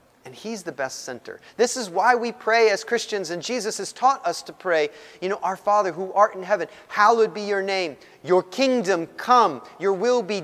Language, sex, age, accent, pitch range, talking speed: English, male, 30-49, American, 200-315 Hz, 215 wpm